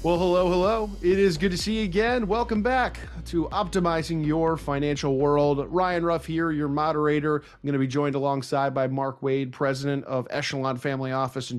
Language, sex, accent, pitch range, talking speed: English, male, American, 125-160 Hz, 190 wpm